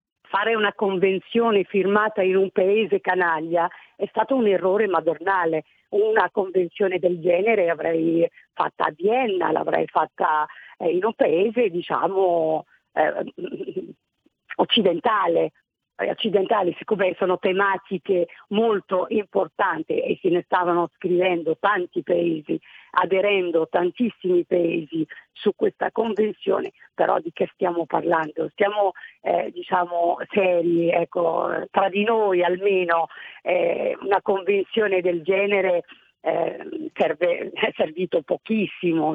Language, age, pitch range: Italian, 50-69, 175-220 Hz